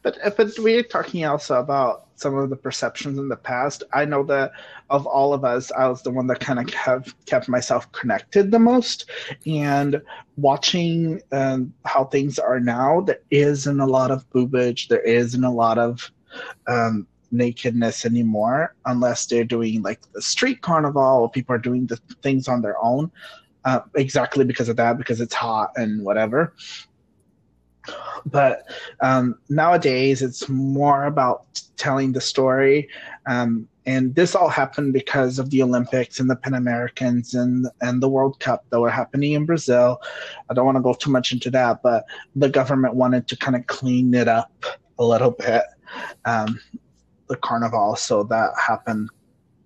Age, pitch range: 30-49, 125-140 Hz